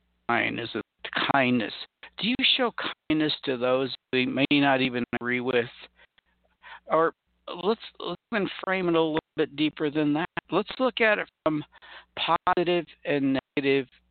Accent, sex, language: American, male, English